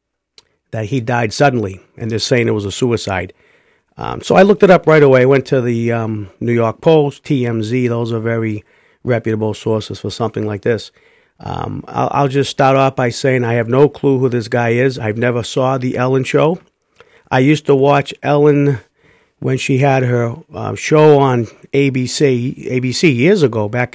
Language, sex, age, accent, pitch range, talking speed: English, male, 50-69, American, 115-140 Hz, 190 wpm